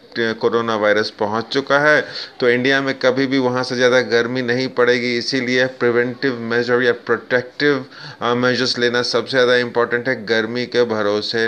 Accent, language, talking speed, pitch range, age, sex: native, Hindi, 155 wpm, 110-130 Hz, 30-49, male